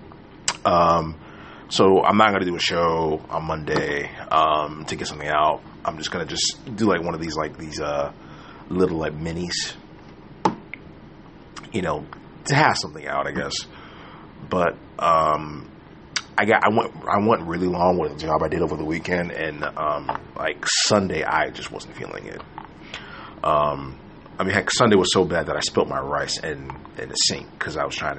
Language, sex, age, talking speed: English, male, 30-49, 185 wpm